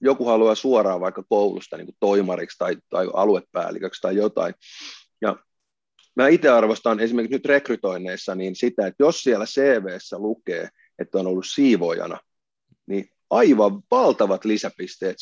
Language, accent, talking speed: Finnish, native, 135 wpm